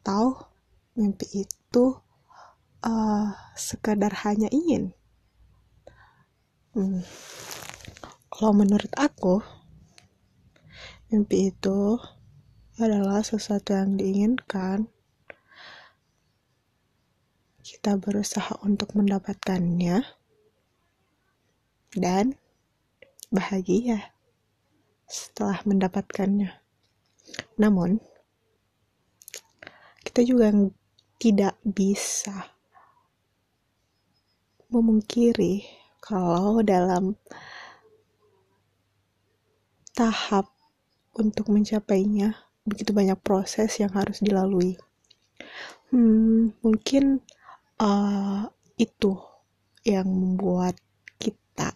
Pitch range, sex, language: 190-225 Hz, female, Indonesian